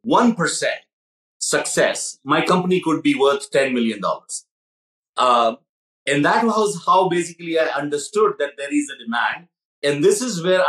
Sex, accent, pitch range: male, Indian, 130-185 Hz